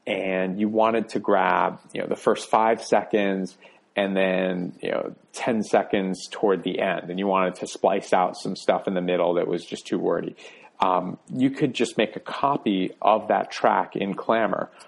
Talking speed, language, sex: 195 wpm, English, male